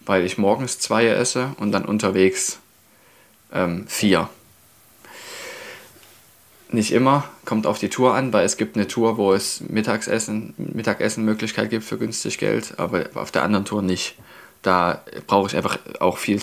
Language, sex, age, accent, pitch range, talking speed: German, male, 20-39, German, 95-110 Hz, 150 wpm